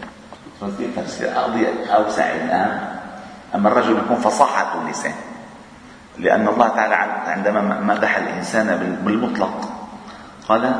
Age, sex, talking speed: 40-59, male, 85 wpm